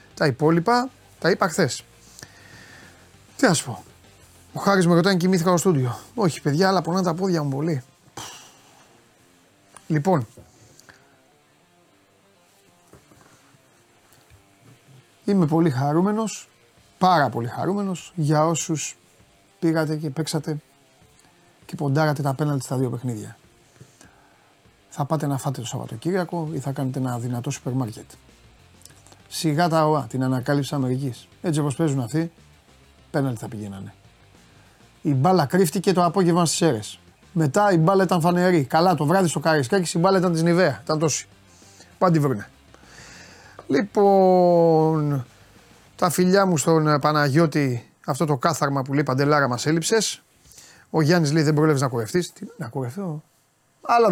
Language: Greek